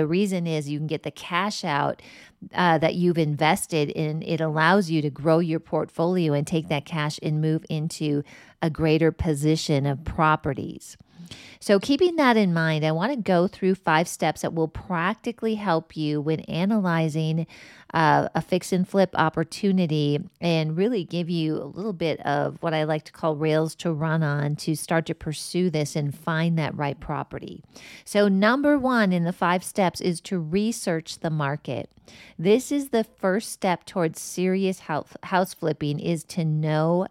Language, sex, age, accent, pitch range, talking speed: English, female, 40-59, American, 155-190 Hz, 175 wpm